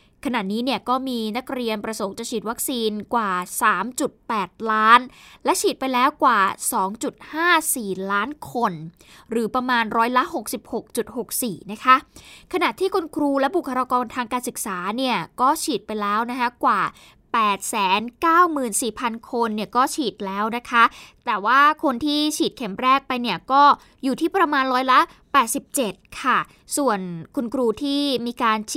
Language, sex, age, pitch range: Thai, female, 20-39, 215-275 Hz